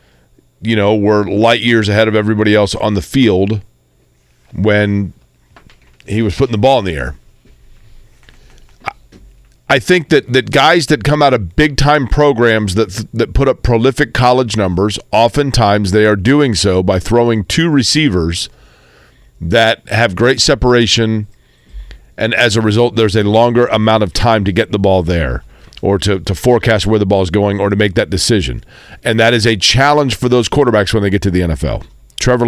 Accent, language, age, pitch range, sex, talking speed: American, English, 40-59, 100-125 Hz, male, 180 wpm